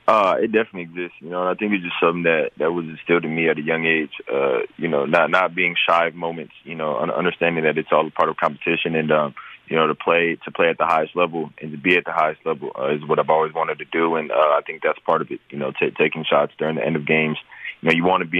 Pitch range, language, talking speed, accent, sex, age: 75-85 Hz, English, 300 wpm, American, male, 20-39